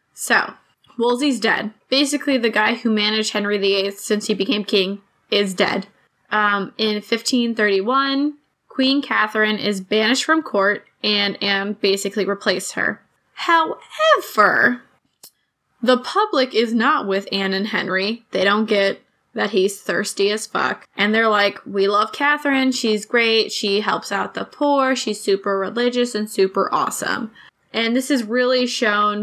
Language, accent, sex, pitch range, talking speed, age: English, American, female, 200-250 Hz, 145 wpm, 10-29